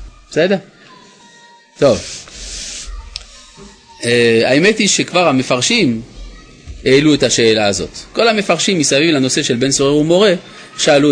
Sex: male